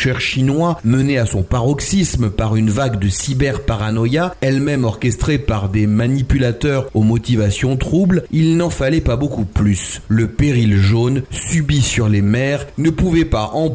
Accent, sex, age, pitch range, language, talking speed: French, male, 30-49, 115-150 Hz, French, 155 wpm